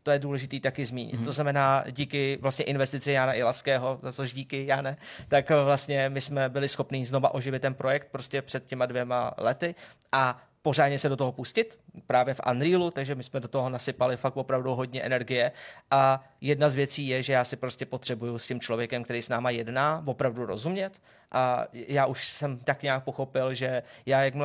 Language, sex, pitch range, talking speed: Czech, male, 130-145 Hz, 190 wpm